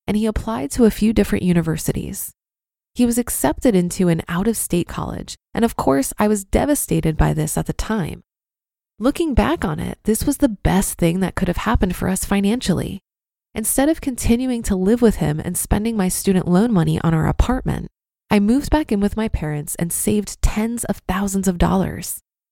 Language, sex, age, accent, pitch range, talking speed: English, female, 20-39, American, 175-230 Hz, 190 wpm